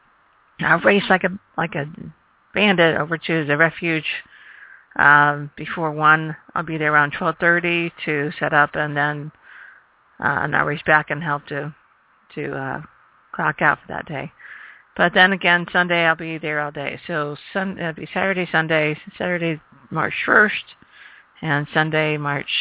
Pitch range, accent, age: 155-180 Hz, American, 40-59